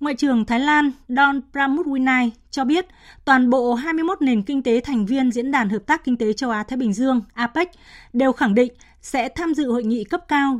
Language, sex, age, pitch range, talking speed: Vietnamese, female, 20-39, 225-280 Hz, 210 wpm